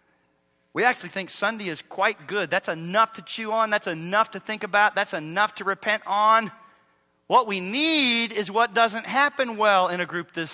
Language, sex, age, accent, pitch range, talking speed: English, male, 40-59, American, 140-210 Hz, 195 wpm